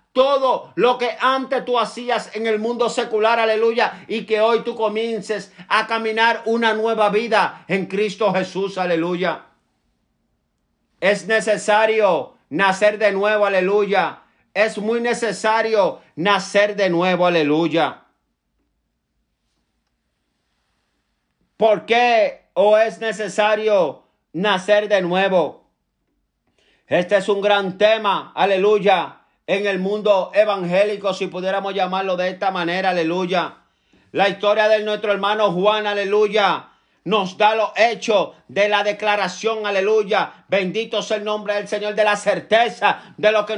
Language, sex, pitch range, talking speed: Spanish, male, 200-225 Hz, 125 wpm